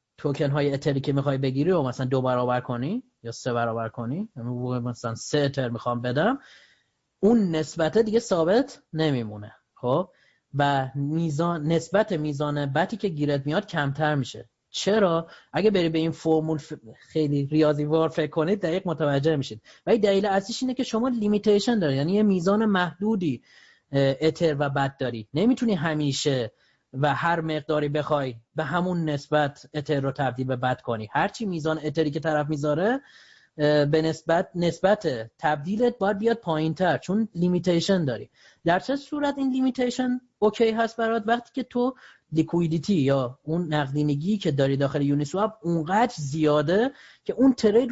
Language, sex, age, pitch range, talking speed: Persian, male, 30-49, 145-210 Hz, 150 wpm